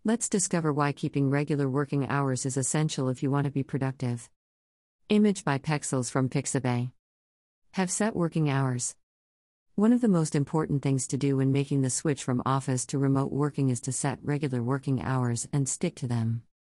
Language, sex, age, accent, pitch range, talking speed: English, female, 50-69, American, 130-160 Hz, 180 wpm